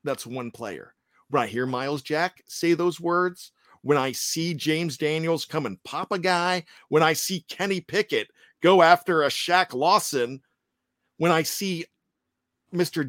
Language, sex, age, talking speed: English, male, 50-69, 160 wpm